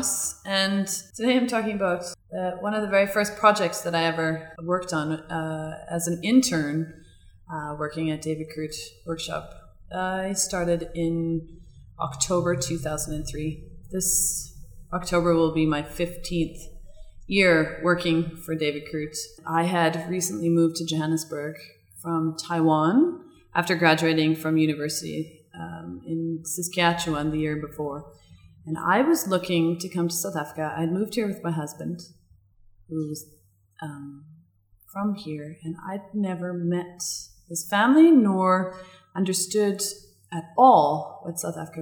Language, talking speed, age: English, 135 wpm, 20-39